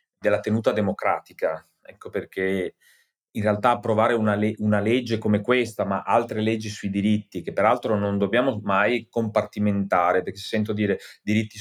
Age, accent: 30-49, native